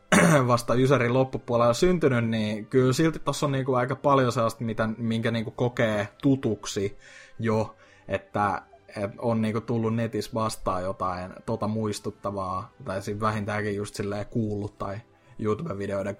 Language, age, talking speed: Finnish, 20-39, 140 wpm